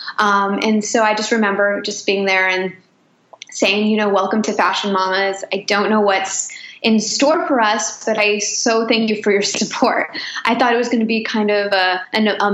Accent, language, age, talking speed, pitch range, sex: American, English, 10-29, 215 wpm, 200-235 Hz, female